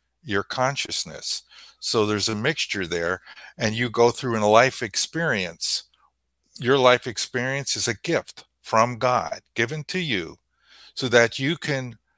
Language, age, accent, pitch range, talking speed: English, 50-69, American, 105-130 Hz, 150 wpm